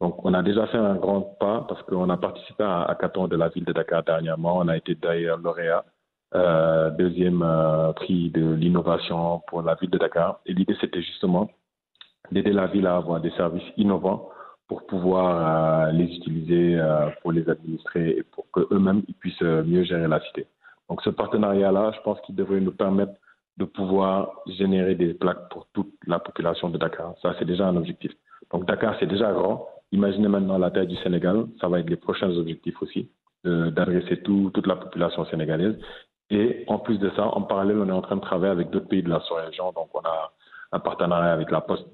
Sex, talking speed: male, 205 wpm